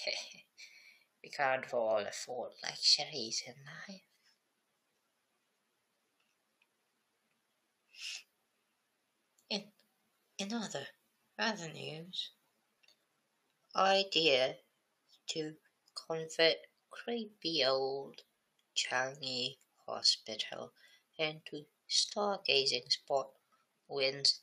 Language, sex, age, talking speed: English, female, 20-39, 55 wpm